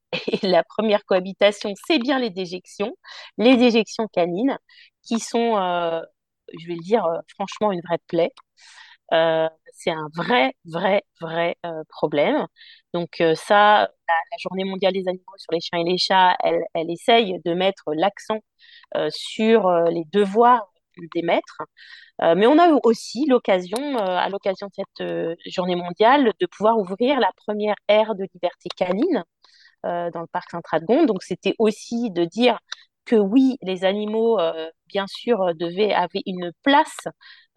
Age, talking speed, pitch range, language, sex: 30-49, 160 wpm, 175-230 Hz, French, female